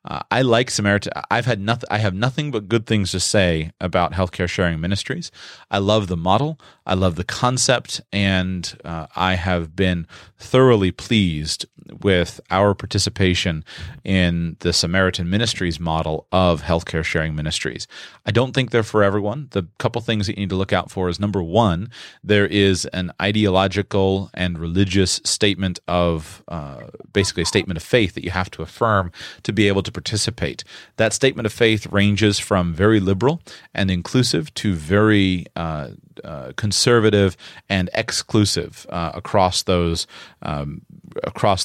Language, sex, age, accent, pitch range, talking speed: English, male, 30-49, American, 90-105 Hz, 155 wpm